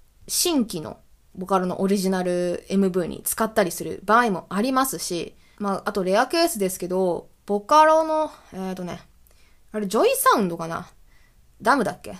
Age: 20-39